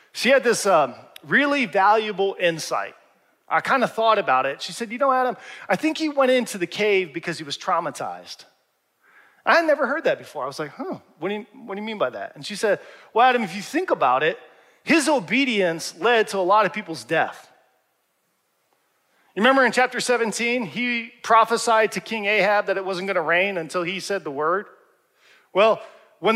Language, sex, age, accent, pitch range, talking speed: English, male, 40-59, American, 195-260 Hz, 200 wpm